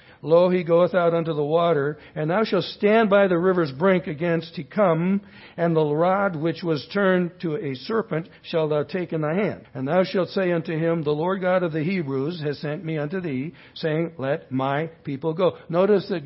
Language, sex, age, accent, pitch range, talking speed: English, male, 60-79, American, 145-180 Hz, 210 wpm